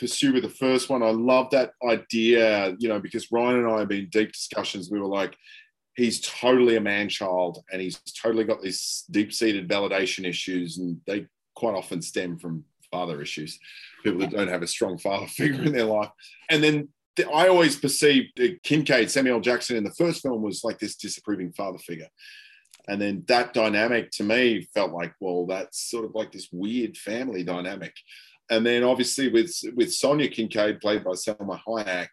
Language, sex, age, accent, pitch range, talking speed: English, male, 30-49, Australian, 100-135 Hz, 190 wpm